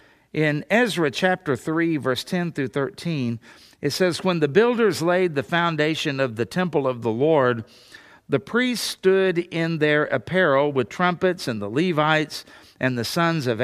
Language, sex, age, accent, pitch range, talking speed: English, male, 50-69, American, 135-180 Hz, 165 wpm